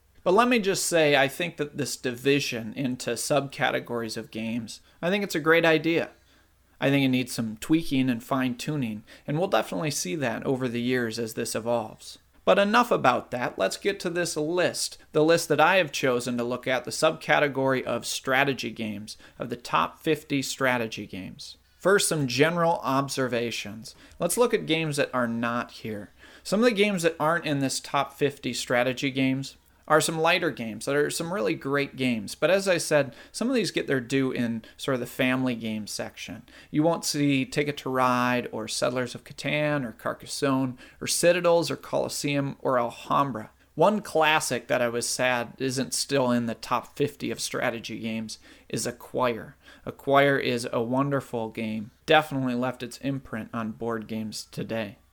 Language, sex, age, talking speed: English, male, 30-49, 180 wpm